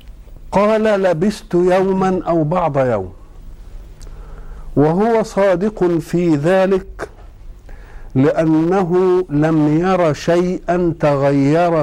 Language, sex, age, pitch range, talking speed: Arabic, male, 50-69, 130-185 Hz, 75 wpm